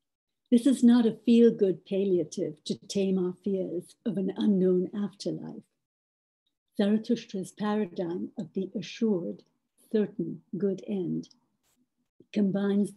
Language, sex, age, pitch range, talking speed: Persian, female, 60-79, 180-220 Hz, 105 wpm